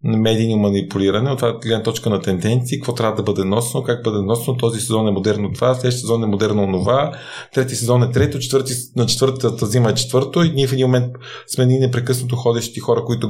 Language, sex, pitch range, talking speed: Bulgarian, male, 110-130 Hz, 210 wpm